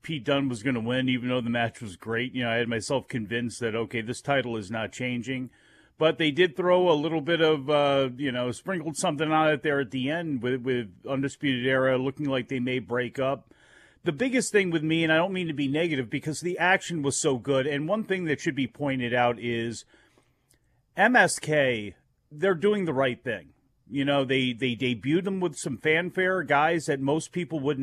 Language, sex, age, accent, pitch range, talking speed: English, male, 40-59, American, 125-155 Hz, 220 wpm